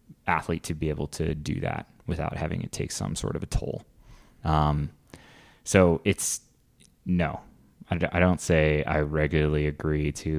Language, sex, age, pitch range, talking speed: English, male, 20-39, 75-80 Hz, 155 wpm